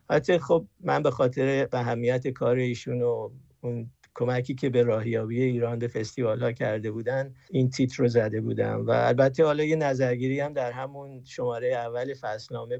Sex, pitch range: male, 120-140 Hz